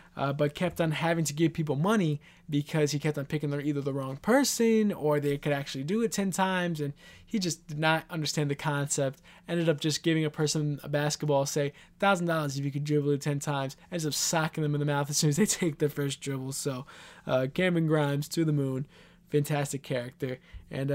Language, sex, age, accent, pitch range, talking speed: English, male, 20-39, American, 145-175 Hz, 220 wpm